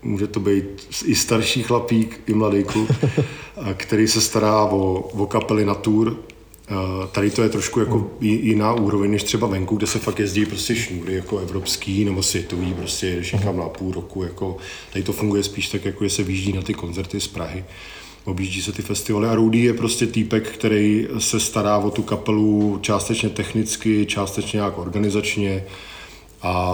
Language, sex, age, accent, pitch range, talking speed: Czech, male, 40-59, native, 95-110 Hz, 170 wpm